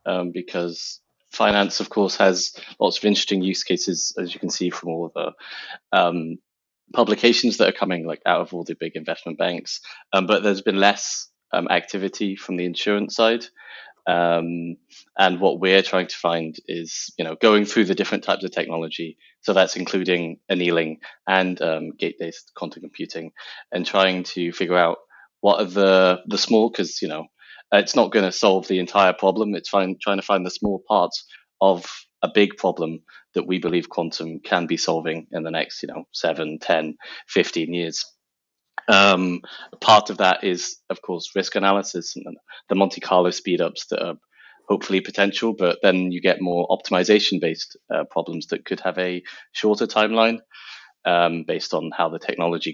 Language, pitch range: English, 85-100 Hz